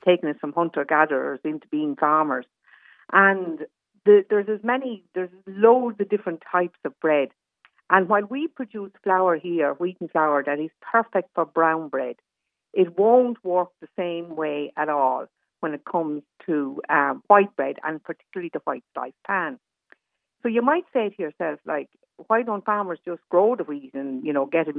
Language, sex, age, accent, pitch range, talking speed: English, female, 50-69, Irish, 155-215 Hz, 180 wpm